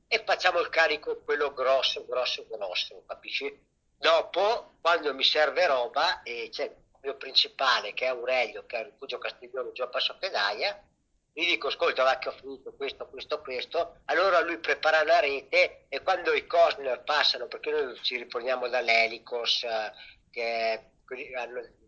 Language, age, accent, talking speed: Italian, 50-69, native, 160 wpm